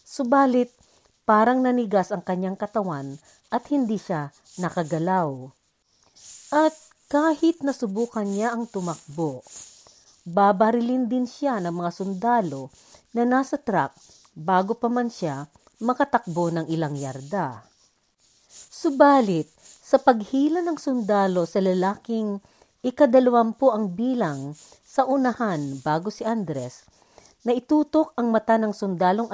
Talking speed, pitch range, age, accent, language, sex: 110 wpm, 175-260 Hz, 50-69, native, Filipino, female